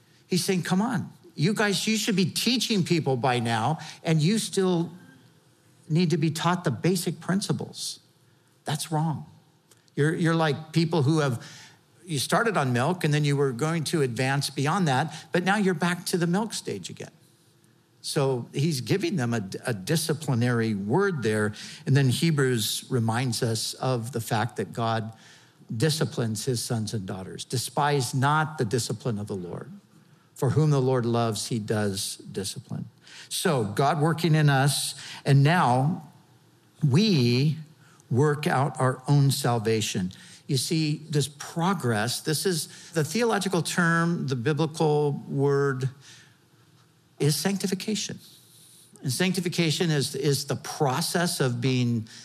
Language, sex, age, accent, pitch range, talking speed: English, male, 50-69, American, 130-170 Hz, 145 wpm